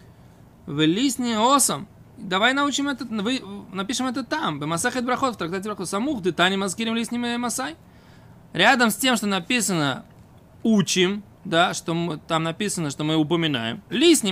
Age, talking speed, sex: 20-39, 130 wpm, male